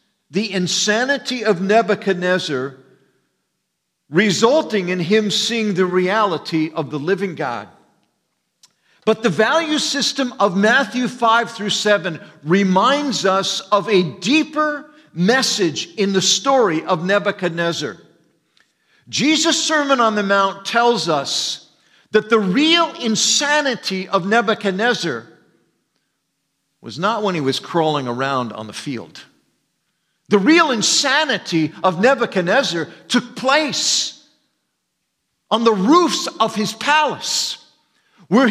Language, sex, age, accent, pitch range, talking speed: English, male, 50-69, American, 190-280 Hz, 110 wpm